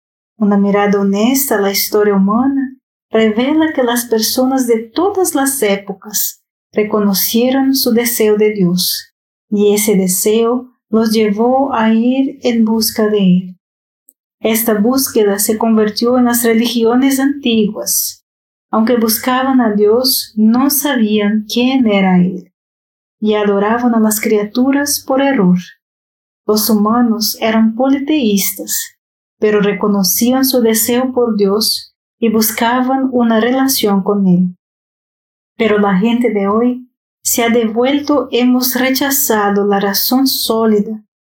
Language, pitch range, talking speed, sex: Spanish, 210-250 Hz, 120 wpm, female